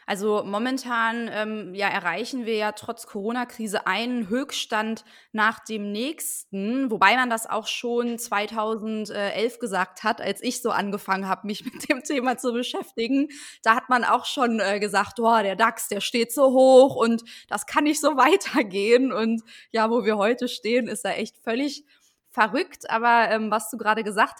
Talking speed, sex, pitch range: 170 wpm, female, 205-245 Hz